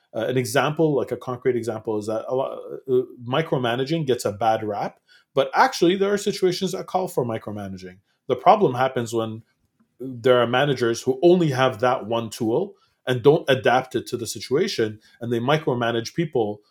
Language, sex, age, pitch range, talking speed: English, male, 30-49, 115-160 Hz, 170 wpm